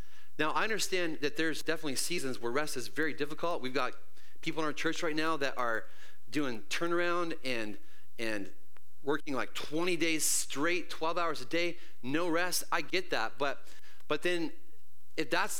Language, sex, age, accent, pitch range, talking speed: English, male, 30-49, American, 95-150 Hz, 175 wpm